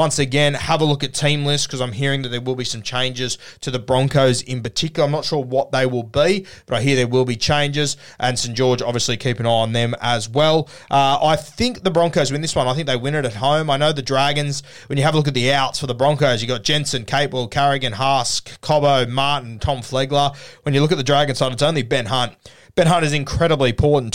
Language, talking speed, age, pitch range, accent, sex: English, 255 wpm, 20-39, 125-150 Hz, Australian, male